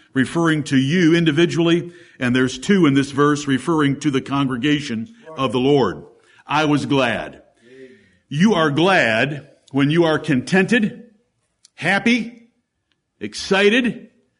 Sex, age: male, 60-79